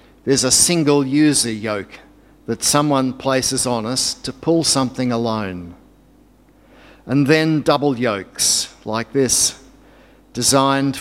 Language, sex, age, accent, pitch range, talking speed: English, male, 60-79, Australian, 125-150 Hz, 110 wpm